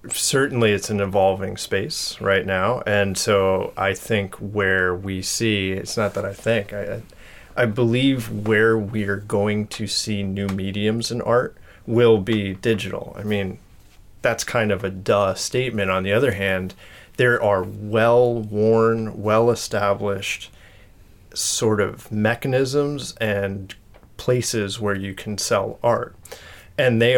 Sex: male